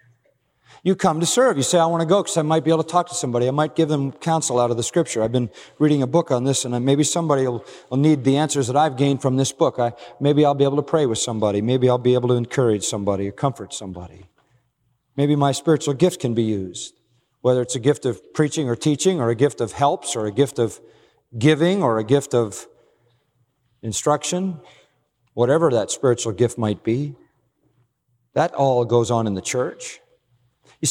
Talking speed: 215 wpm